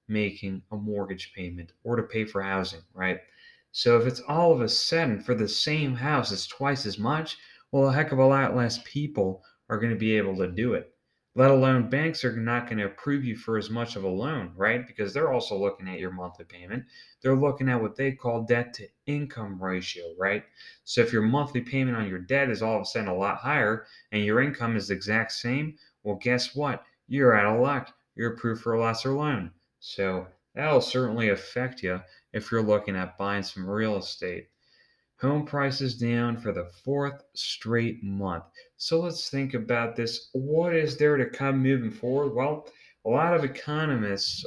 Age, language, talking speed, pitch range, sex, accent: 30-49, English, 200 wpm, 100-135 Hz, male, American